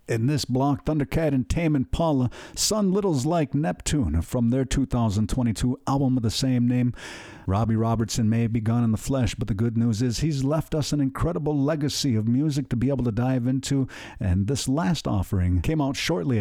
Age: 50-69